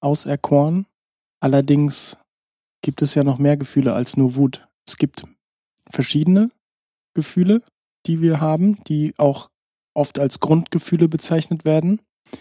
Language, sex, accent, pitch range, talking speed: German, male, German, 135-160 Hz, 120 wpm